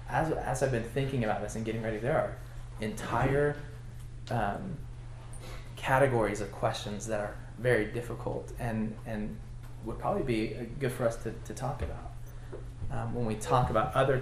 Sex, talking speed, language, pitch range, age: male, 165 wpm, English, 115-125 Hz, 20-39